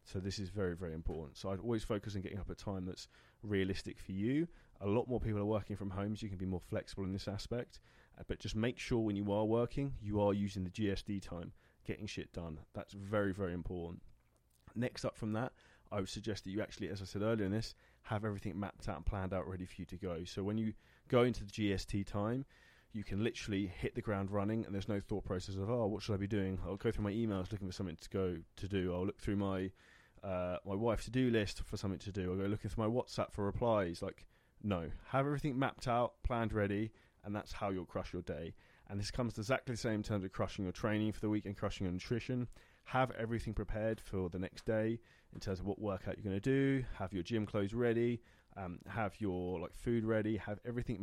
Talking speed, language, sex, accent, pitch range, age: 245 wpm, English, male, British, 95-110 Hz, 20-39